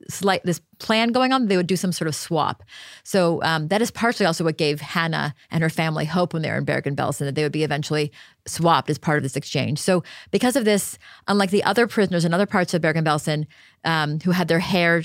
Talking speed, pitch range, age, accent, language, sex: 230 wpm, 155-185 Hz, 30-49, American, English, female